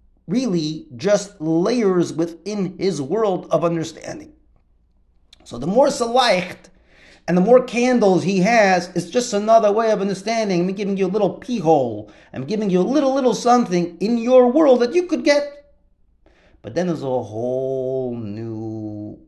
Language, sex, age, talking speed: English, male, 50-69, 160 wpm